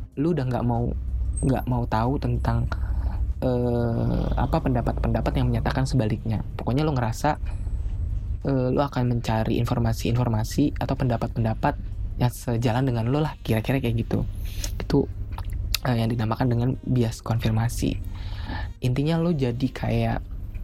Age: 20-39